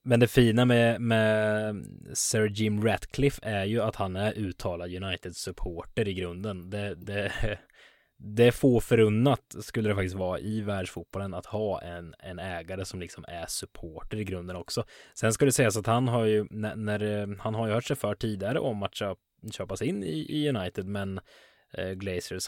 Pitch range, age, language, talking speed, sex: 95-120 Hz, 20-39, Swedish, 175 wpm, male